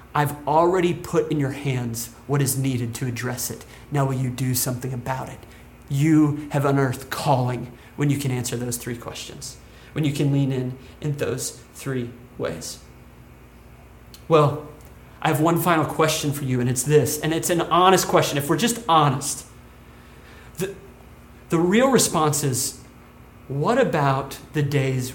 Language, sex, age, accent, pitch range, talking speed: English, male, 30-49, American, 130-215 Hz, 160 wpm